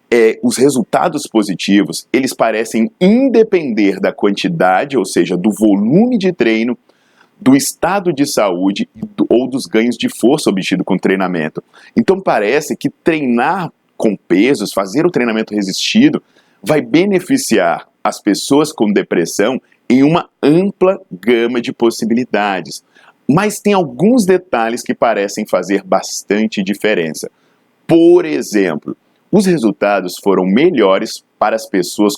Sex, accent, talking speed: male, Brazilian, 125 wpm